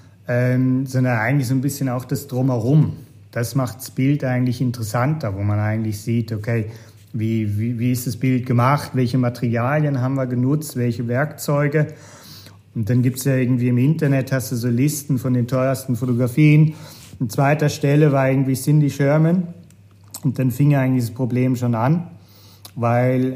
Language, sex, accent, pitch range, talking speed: German, male, German, 120-145 Hz, 170 wpm